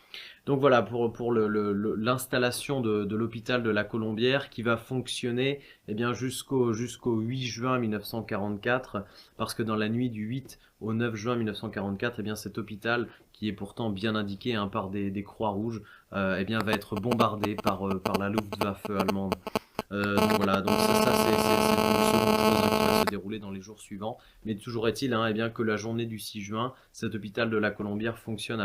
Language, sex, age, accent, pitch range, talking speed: French, male, 20-39, French, 105-120 Hz, 205 wpm